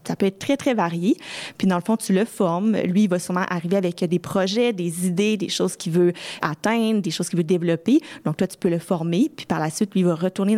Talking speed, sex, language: 265 wpm, female, French